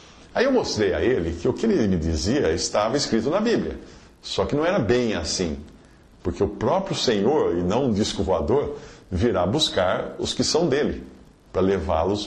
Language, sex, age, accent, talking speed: Portuguese, male, 50-69, Brazilian, 185 wpm